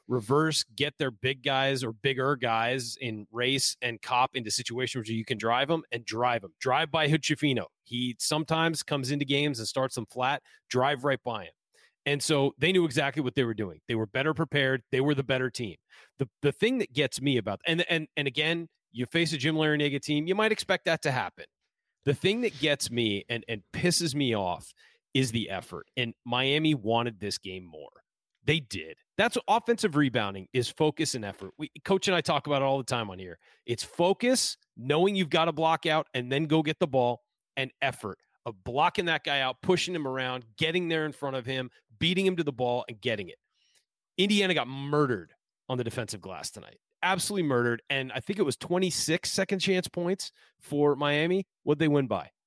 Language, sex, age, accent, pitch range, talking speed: English, male, 30-49, American, 125-165 Hz, 210 wpm